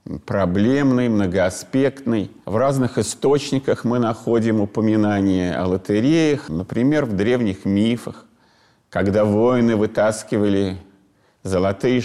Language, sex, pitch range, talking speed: Russian, male, 105-140 Hz, 90 wpm